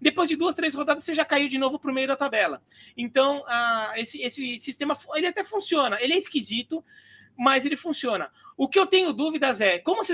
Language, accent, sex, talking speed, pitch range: Portuguese, Brazilian, male, 220 wpm, 235-300 Hz